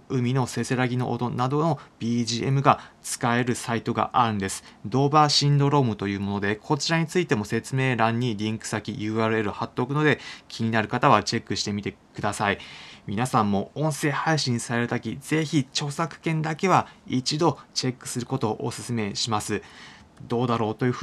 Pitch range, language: 115-150 Hz, Japanese